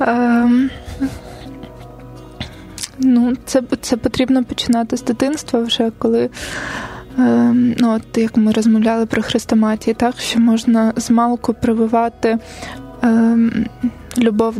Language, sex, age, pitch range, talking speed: Ukrainian, female, 20-39, 225-245 Hz, 105 wpm